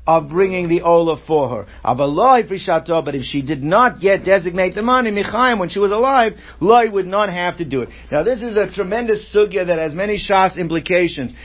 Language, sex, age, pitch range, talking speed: English, male, 50-69, 165-205 Hz, 200 wpm